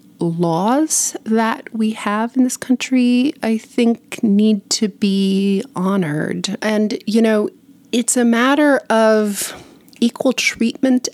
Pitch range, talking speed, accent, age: 175-225 Hz, 120 wpm, American, 30-49